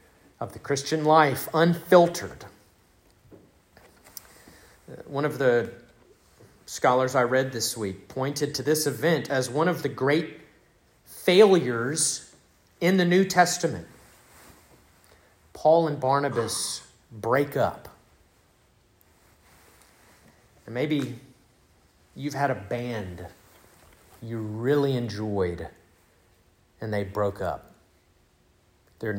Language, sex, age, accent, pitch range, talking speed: English, male, 40-59, American, 100-140 Hz, 95 wpm